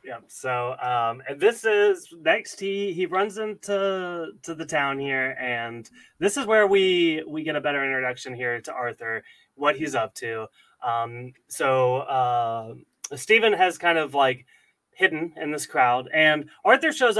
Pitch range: 125-170 Hz